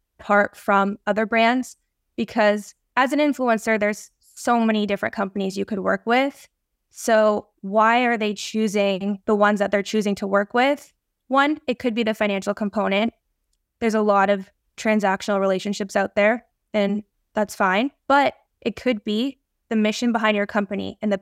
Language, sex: English, female